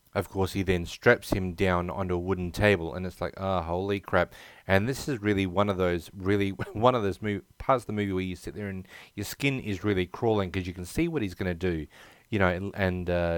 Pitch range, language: 90-105 Hz, English